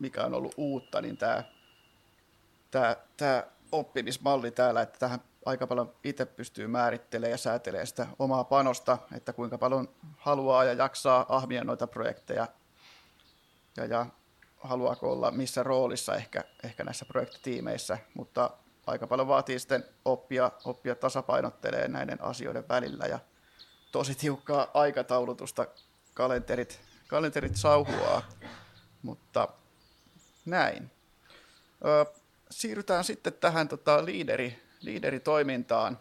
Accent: native